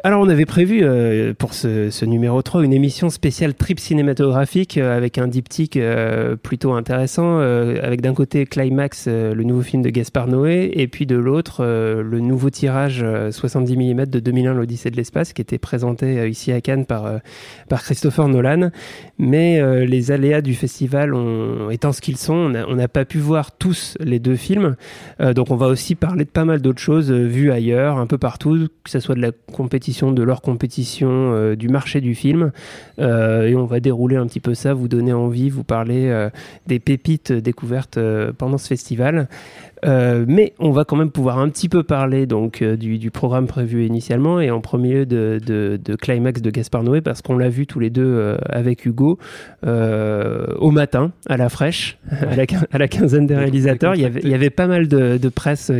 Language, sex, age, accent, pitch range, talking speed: French, male, 30-49, French, 120-145 Hz, 210 wpm